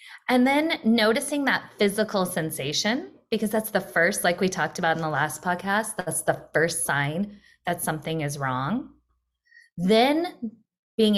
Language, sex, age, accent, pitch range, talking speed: English, female, 20-39, American, 165-230 Hz, 150 wpm